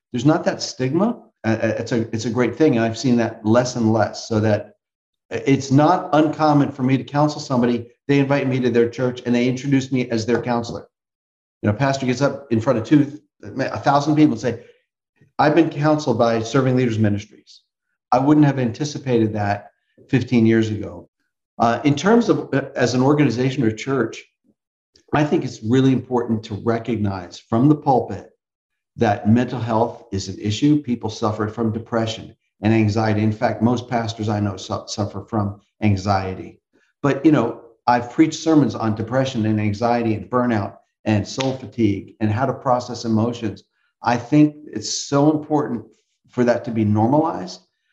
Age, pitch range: 50-69, 110-140 Hz